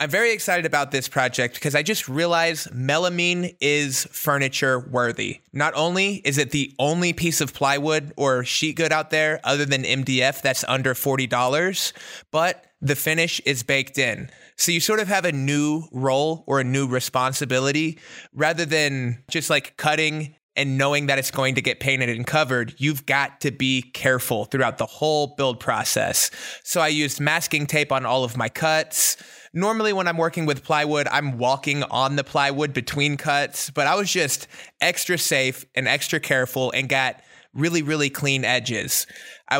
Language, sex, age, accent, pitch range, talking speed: English, male, 20-39, American, 130-155 Hz, 175 wpm